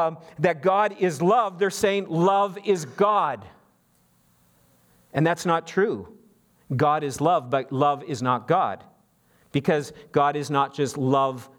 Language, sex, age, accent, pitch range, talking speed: English, male, 50-69, American, 125-160 Hz, 140 wpm